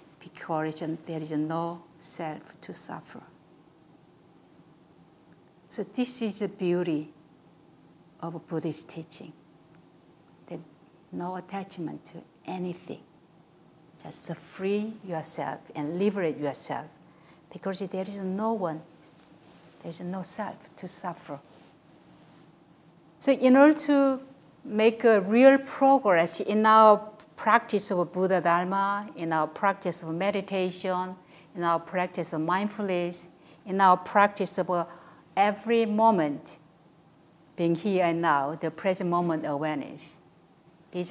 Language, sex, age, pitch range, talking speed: English, female, 50-69, 160-195 Hz, 110 wpm